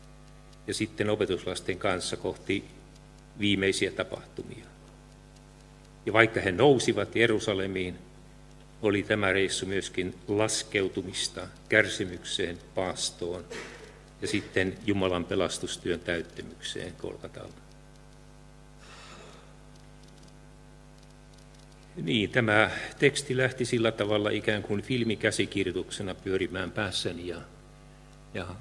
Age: 50-69